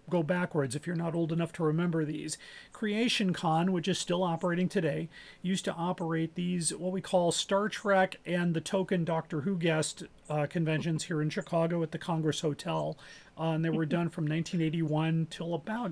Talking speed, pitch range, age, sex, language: 190 wpm, 160-185 Hz, 40-59, male, English